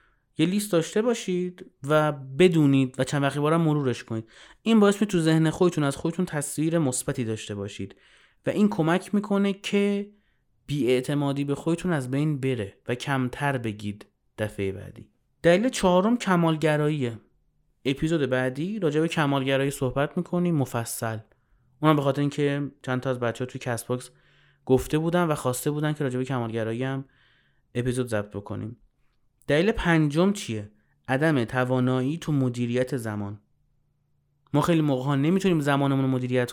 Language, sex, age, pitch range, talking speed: Persian, male, 30-49, 125-160 Hz, 145 wpm